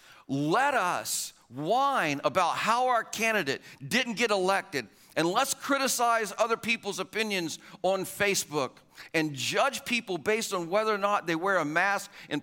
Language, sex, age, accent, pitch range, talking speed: English, male, 50-69, American, 170-230 Hz, 150 wpm